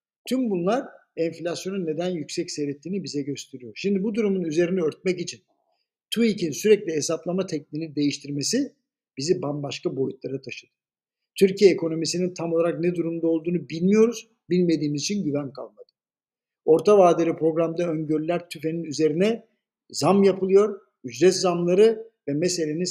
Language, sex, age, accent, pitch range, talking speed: Turkish, male, 60-79, native, 155-205 Hz, 125 wpm